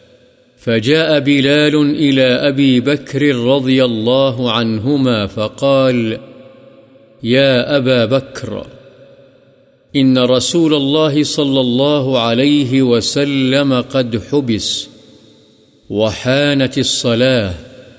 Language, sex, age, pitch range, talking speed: Urdu, male, 50-69, 125-140 Hz, 75 wpm